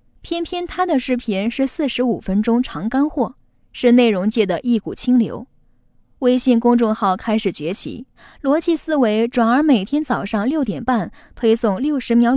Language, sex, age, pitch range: Chinese, female, 10-29, 210-265 Hz